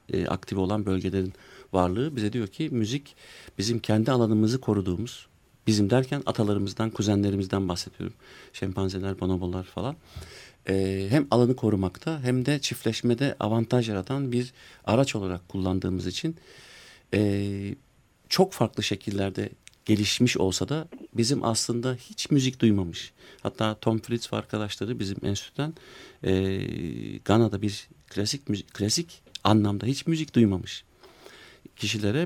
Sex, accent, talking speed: male, native, 120 wpm